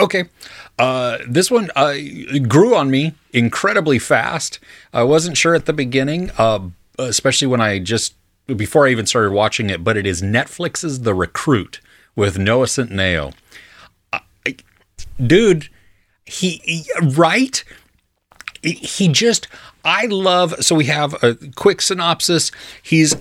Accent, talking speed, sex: American, 135 wpm, male